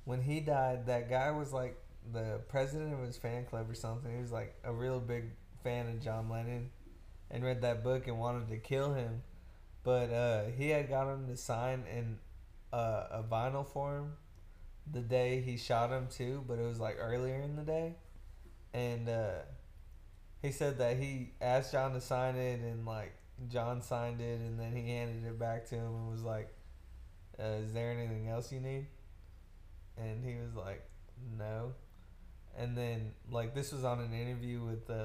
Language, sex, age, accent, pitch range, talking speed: English, male, 20-39, American, 110-125 Hz, 190 wpm